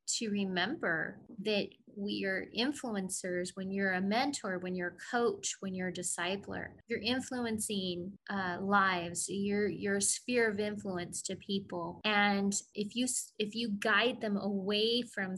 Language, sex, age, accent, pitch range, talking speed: English, female, 20-39, American, 185-215 Hz, 150 wpm